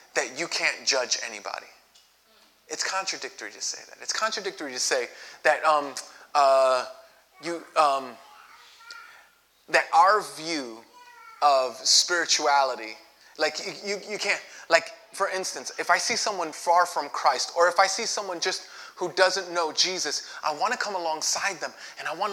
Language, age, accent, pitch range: English, 20-39, American, 150-200 Hz